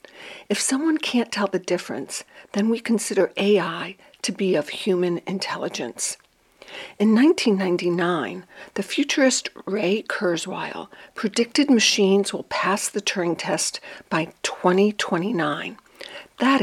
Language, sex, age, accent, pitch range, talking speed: English, female, 60-79, American, 185-250 Hz, 110 wpm